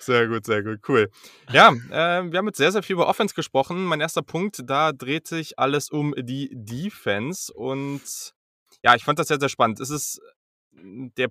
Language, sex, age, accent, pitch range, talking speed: German, male, 20-39, German, 115-145 Hz, 195 wpm